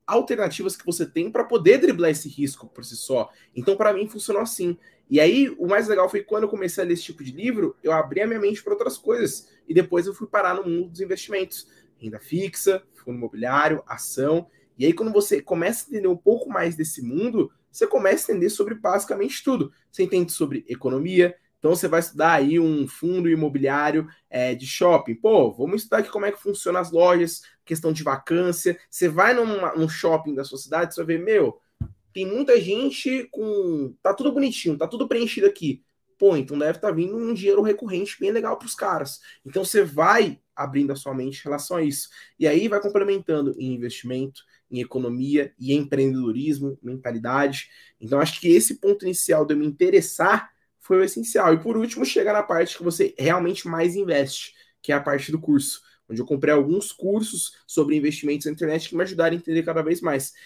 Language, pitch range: Portuguese, 150-205 Hz